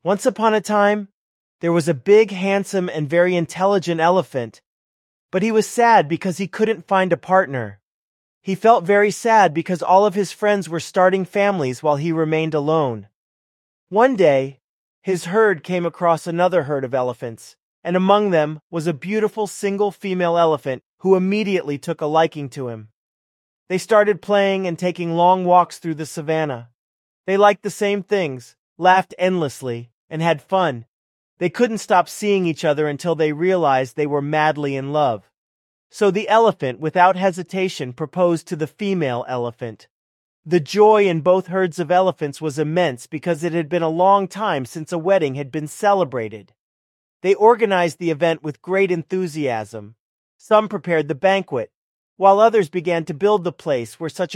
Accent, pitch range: American, 155-195 Hz